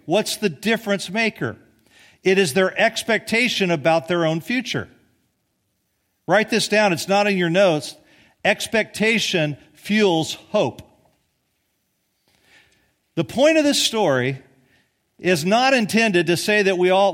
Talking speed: 125 wpm